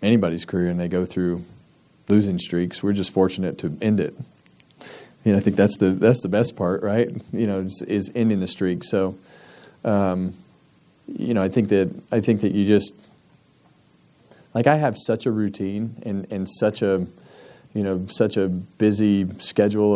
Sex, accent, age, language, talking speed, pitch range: male, American, 30-49, English, 180 wpm, 95-105 Hz